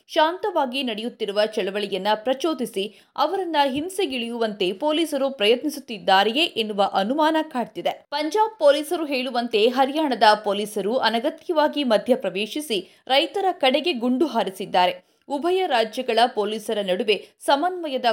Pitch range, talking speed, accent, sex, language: 220-300 Hz, 90 wpm, native, female, Kannada